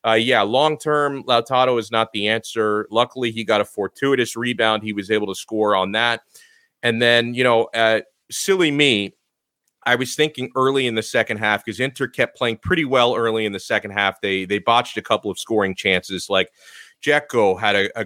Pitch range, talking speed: 115-145 Hz, 200 wpm